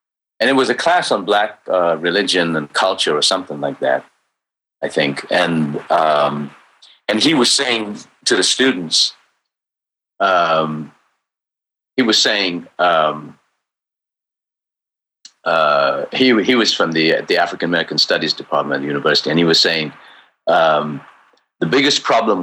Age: 50-69